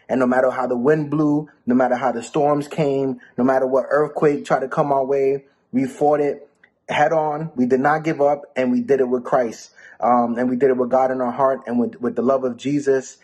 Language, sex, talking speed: English, male, 250 wpm